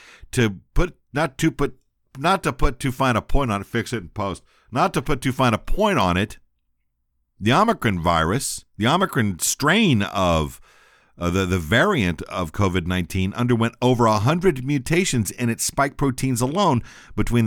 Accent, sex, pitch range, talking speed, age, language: American, male, 75-125 Hz, 180 wpm, 50-69, English